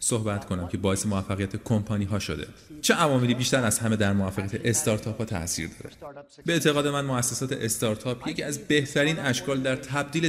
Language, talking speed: Persian, 175 wpm